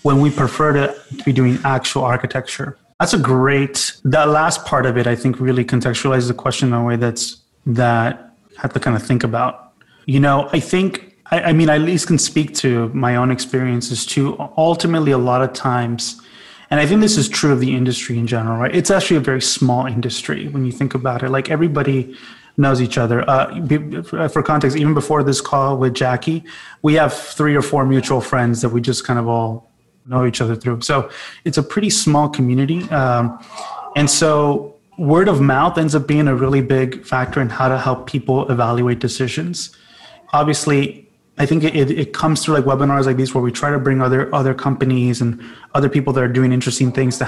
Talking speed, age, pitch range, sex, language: 210 wpm, 20-39, 125-145 Hz, male, English